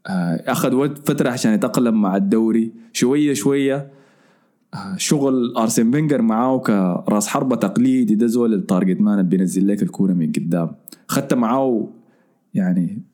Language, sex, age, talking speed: Arabic, male, 20-39, 125 wpm